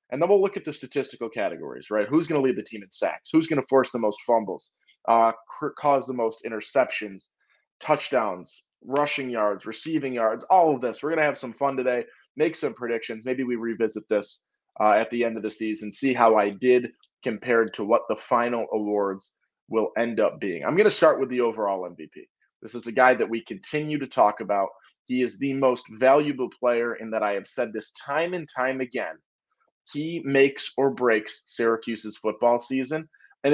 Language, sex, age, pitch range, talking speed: English, male, 20-39, 115-150 Hz, 205 wpm